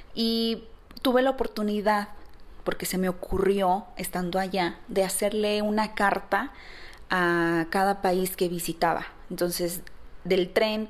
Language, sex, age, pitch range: Spanish, female, 20-39, 175-210 Hz